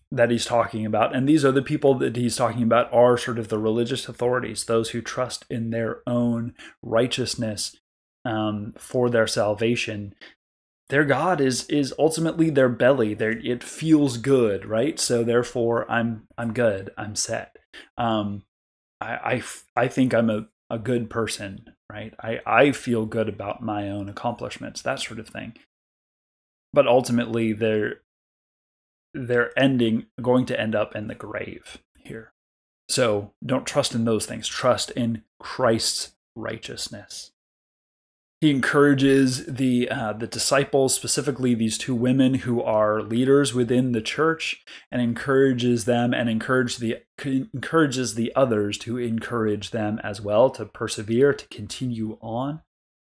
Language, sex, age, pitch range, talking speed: English, male, 20-39, 110-130 Hz, 145 wpm